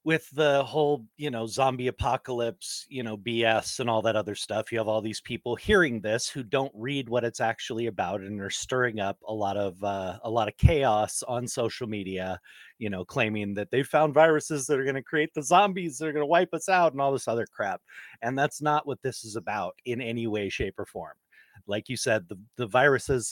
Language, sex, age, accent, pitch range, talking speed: English, male, 30-49, American, 105-130 Hz, 230 wpm